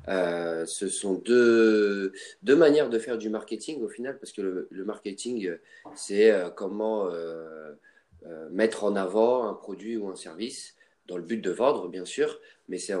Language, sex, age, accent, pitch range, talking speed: French, male, 30-49, French, 90-115 Hz, 180 wpm